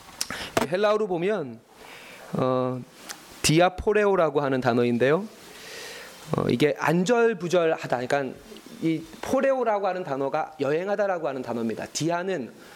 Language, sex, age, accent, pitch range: Korean, male, 30-49, native, 140-210 Hz